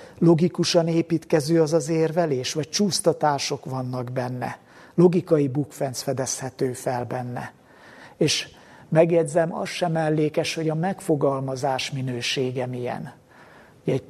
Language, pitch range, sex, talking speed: Hungarian, 135-170 Hz, male, 105 wpm